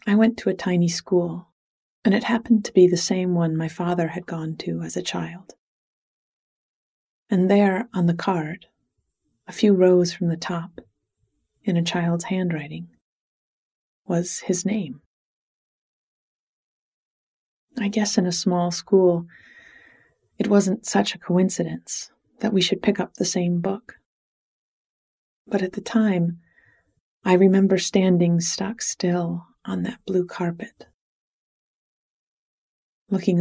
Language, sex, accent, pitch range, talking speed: English, female, American, 170-195 Hz, 130 wpm